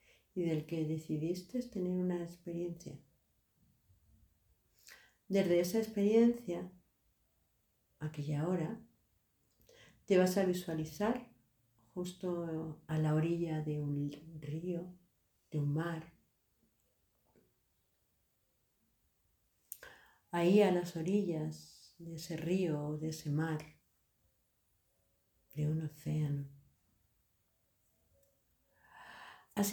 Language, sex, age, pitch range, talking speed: Spanish, female, 50-69, 145-180 Hz, 85 wpm